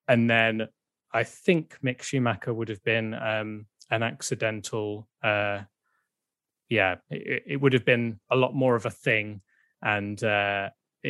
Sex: male